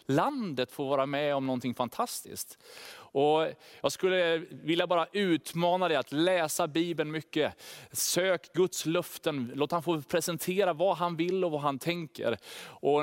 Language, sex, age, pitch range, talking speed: Swedish, male, 30-49, 150-180 Hz, 150 wpm